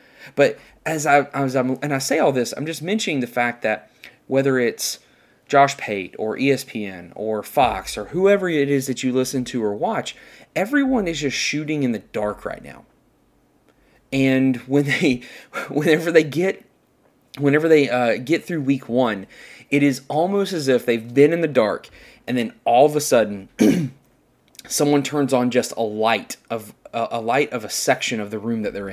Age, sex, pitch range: 20-39, male, 115-145 Hz